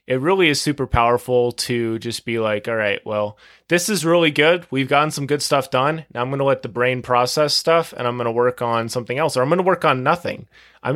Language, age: English, 20-39